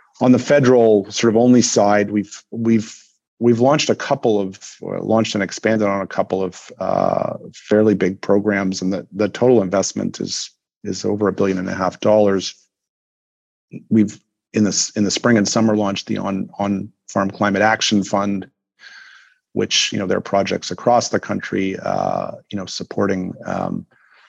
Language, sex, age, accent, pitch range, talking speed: English, male, 40-59, American, 95-110 Hz, 170 wpm